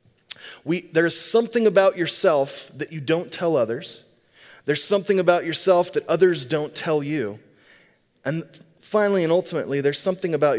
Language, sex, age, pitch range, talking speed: English, male, 30-49, 130-170 Hz, 155 wpm